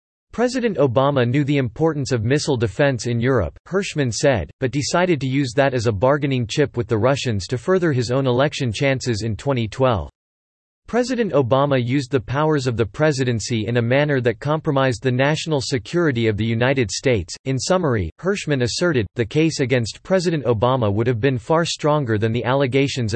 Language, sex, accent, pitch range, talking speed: English, male, American, 120-150 Hz, 180 wpm